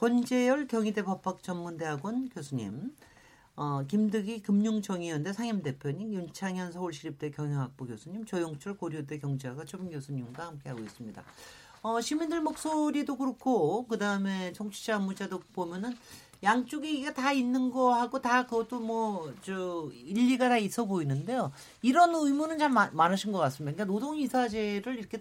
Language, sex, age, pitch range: Korean, male, 40-59, 165-250 Hz